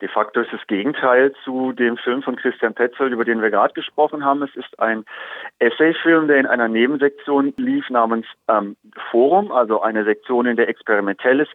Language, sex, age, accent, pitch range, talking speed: German, male, 40-59, German, 120-150 Hz, 180 wpm